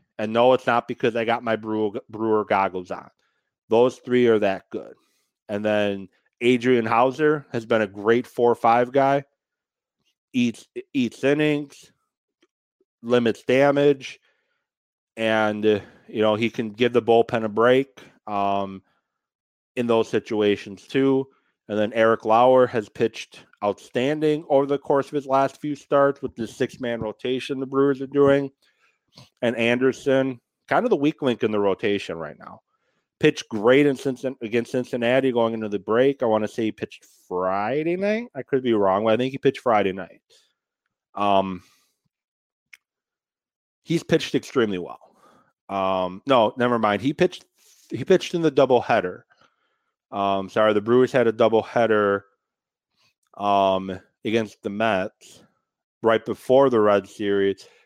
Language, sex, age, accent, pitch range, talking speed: English, male, 30-49, American, 105-135 Hz, 150 wpm